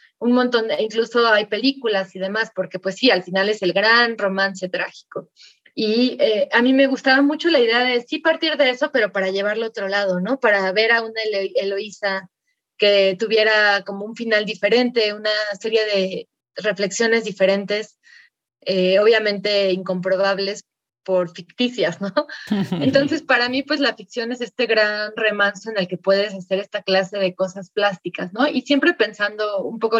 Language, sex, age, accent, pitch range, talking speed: Spanish, female, 20-39, Mexican, 190-230 Hz, 170 wpm